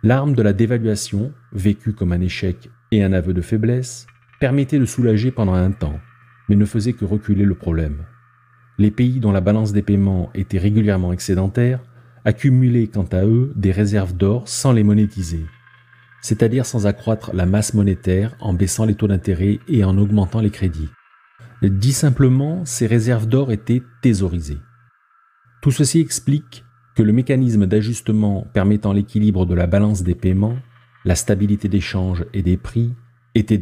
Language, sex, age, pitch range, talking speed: French, male, 40-59, 95-120 Hz, 165 wpm